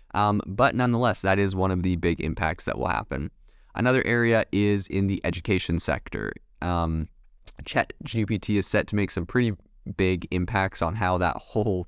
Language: English